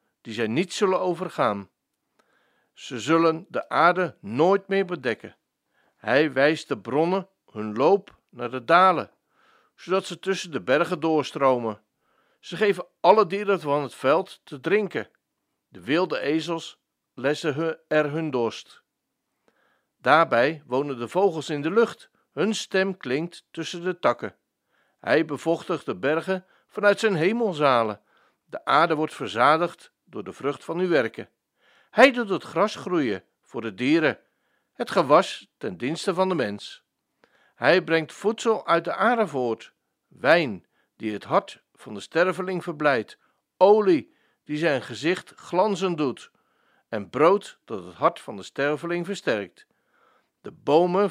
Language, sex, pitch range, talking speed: Dutch, male, 150-195 Hz, 140 wpm